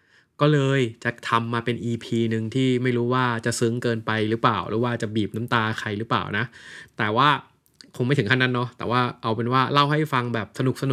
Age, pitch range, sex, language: 20-39, 115-140 Hz, male, Thai